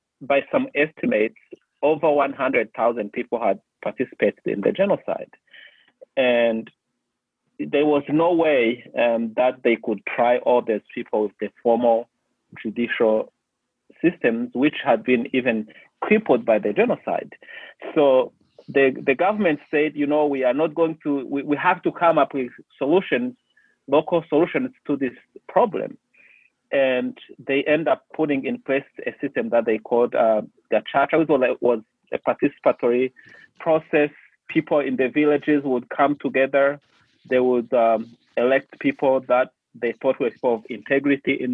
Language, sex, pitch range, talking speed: English, male, 120-150 Hz, 145 wpm